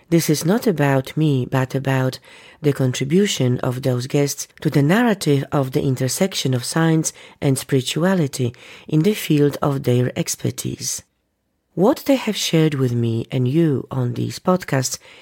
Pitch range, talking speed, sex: 130-165 Hz, 155 wpm, female